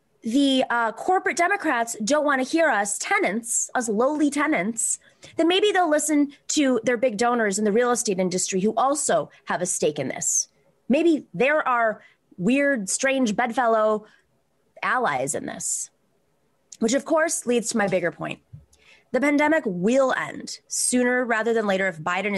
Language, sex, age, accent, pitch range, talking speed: English, female, 20-39, American, 190-255 Hz, 160 wpm